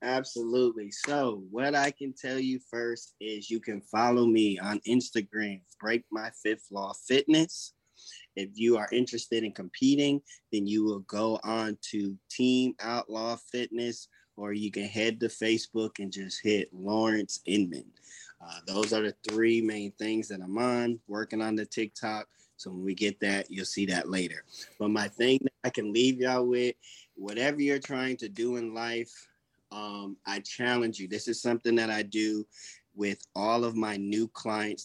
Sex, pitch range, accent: male, 105-125 Hz, American